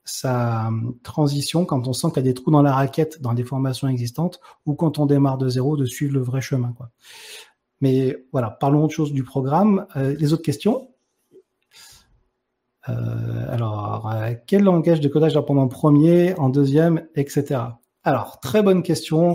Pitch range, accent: 125-155 Hz, French